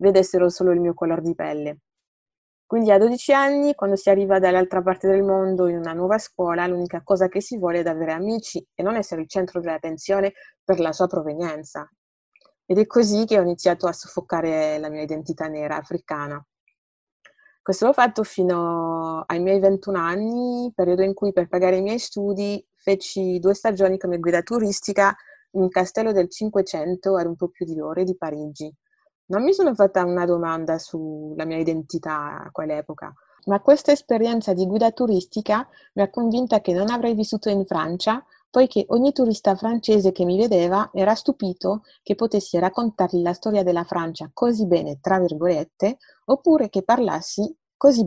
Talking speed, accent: 170 wpm, native